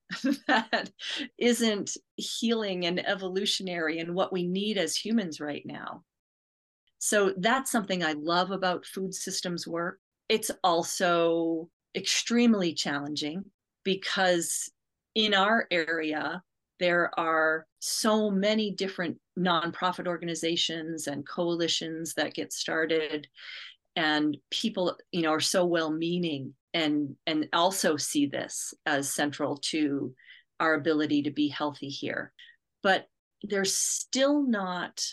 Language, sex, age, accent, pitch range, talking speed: English, female, 40-59, American, 155-195 Hz, 115 wpm